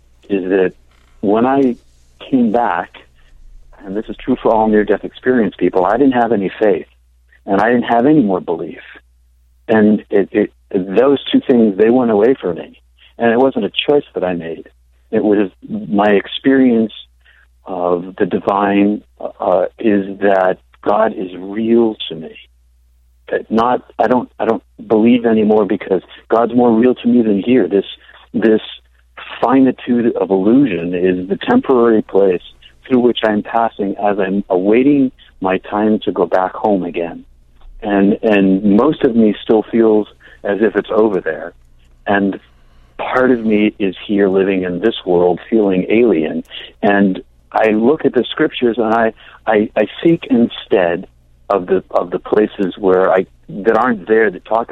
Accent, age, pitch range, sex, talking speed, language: American, 50-69, 85-115 Hz, male, 160 wpm, English